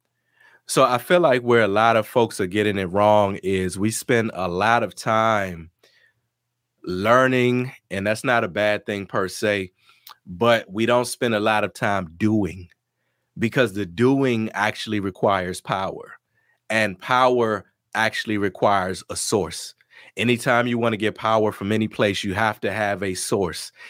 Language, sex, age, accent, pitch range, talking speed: English, male, 30-49, American, 105-115 Hz, 165 wpm